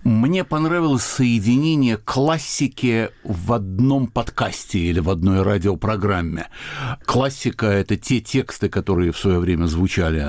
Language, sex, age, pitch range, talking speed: Russian, male, 60-79, 95-130 Hz, 120 wpm